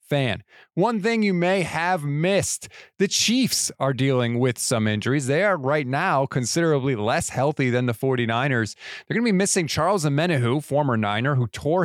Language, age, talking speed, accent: English, 30-49, 170 wpm, American